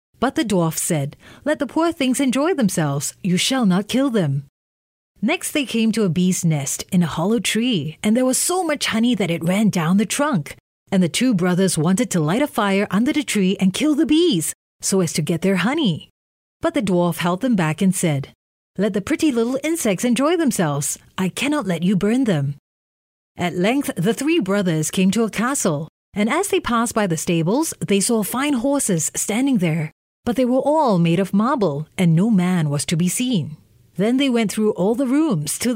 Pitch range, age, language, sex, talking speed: 170-245 Hz, 30-49, English, female, 210 wpm